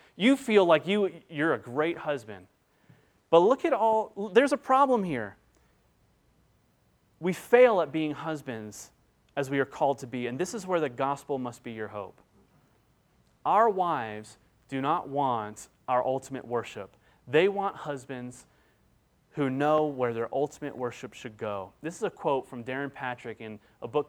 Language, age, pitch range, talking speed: English, 30-49, 120-155 Hz, 165 wpm